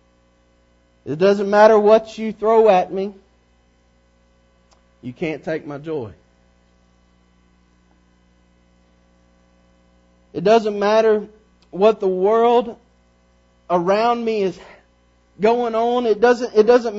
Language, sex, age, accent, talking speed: English, male, 40-59, American, 95 wpm